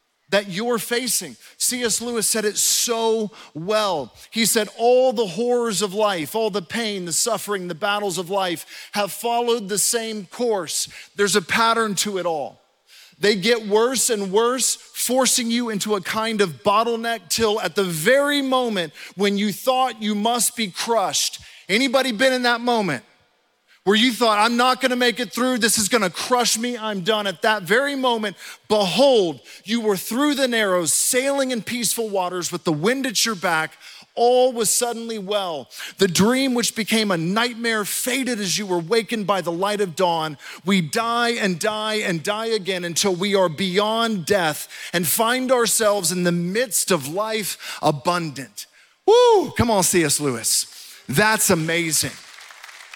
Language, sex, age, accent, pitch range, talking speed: English, male, 40-59, American, 195-235 Hz, 170 wpm